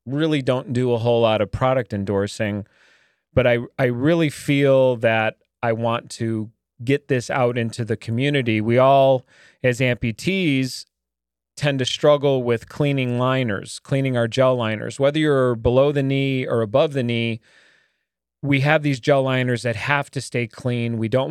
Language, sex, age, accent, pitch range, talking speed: English, male, 30-49, American, 115-140 Hz, 165 wpm